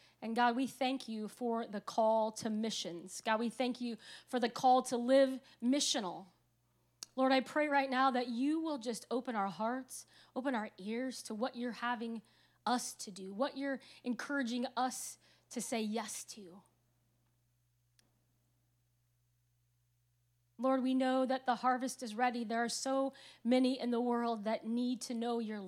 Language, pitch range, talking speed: English, 200-250 Hz, 165 wpm